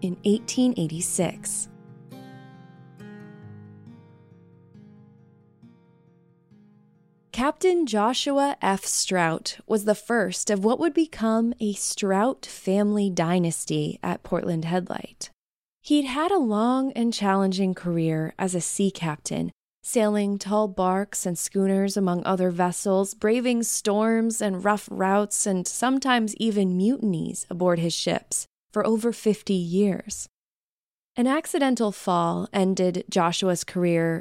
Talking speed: 105 wpm